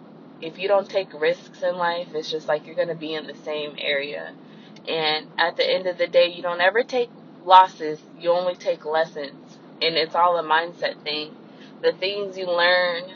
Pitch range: 160-245 Hz